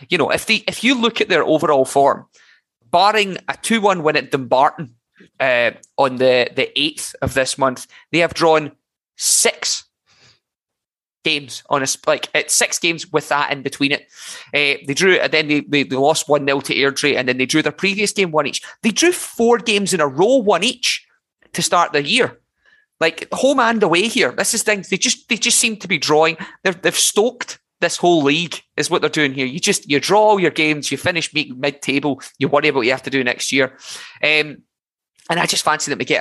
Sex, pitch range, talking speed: male, 140-190 Hz, 220 wpm